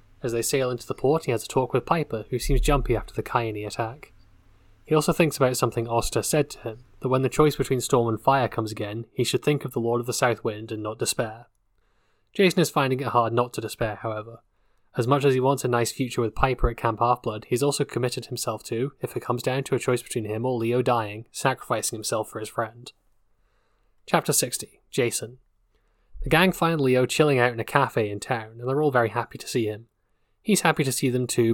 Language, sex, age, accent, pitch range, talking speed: English, male, 20-39, British, 110-130 Hz, 235 wpm